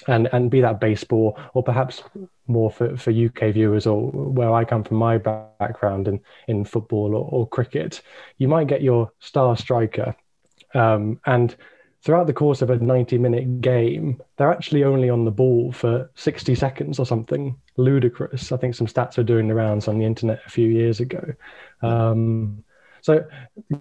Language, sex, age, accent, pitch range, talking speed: English, male, 20-39, British, 110-130 Hz, 175 wpm